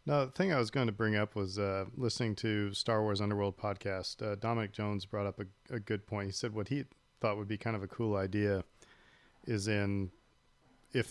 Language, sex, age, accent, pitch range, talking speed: English, male, 40-59, American, 100-110 Hz, 220 wpm